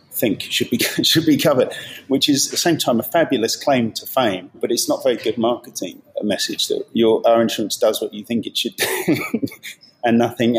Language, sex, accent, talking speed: English, male, British, 215 wpm